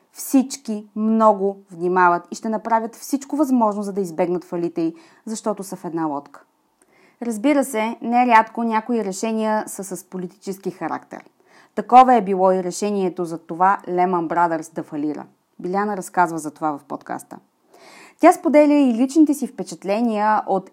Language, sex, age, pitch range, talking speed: Bulgarian, female, 20-39, 185-275 Hz, 150 wpm